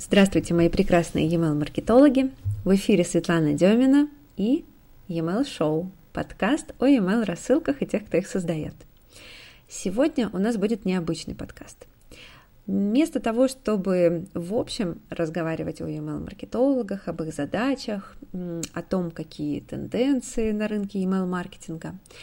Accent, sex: native, female